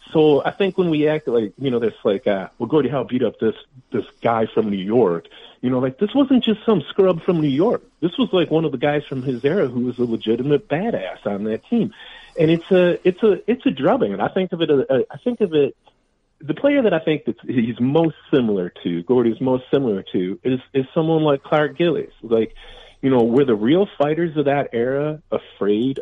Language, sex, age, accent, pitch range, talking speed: English, male, 30-49, American, 130-175 Hz, 230 wpm